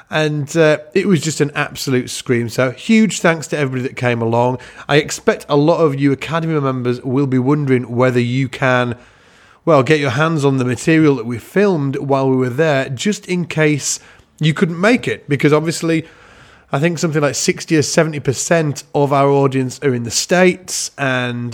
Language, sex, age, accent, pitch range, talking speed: English, male, 30-49, British, 130-155 Hz, 190 wpm